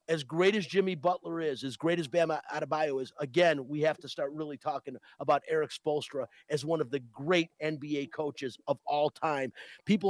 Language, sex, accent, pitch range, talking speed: English, male, American, 155-190 Hz, 195 wpm